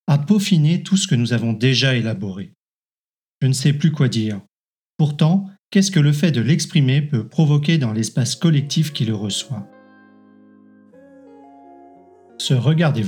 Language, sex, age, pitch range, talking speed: French, male, 40-59, 125-170 Hz, 145 wpm